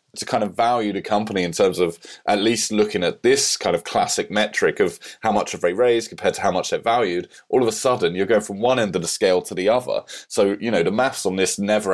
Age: 30-49